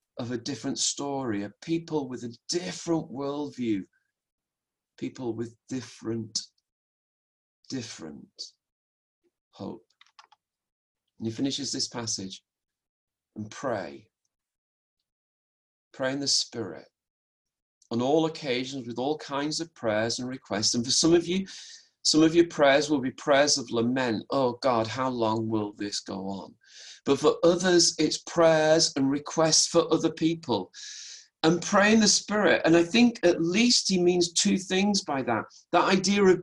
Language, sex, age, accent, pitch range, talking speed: English, male, 40-59, British, 115-170 Hz, 140 wpm